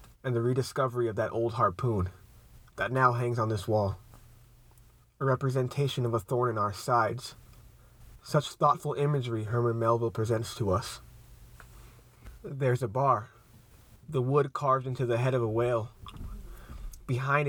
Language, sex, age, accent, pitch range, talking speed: English, male, 30-49, American, 115-130 Hz, 145 wpm